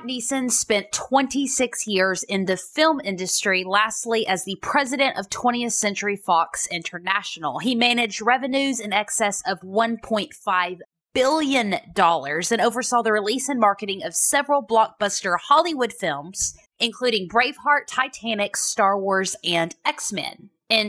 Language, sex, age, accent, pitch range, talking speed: English, female, 20-39, American, 200-255 Hz, 130 wpm